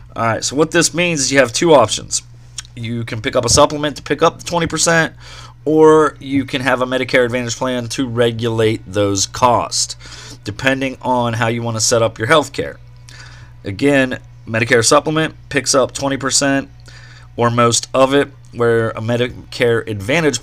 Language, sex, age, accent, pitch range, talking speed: English, male, 30-49, American, 115-135 Hz, 165 wpm